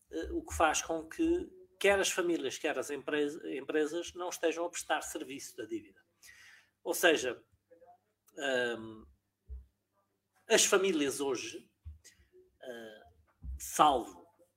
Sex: male